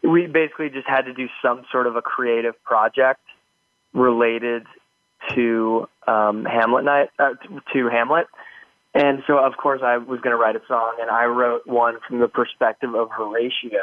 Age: 20-39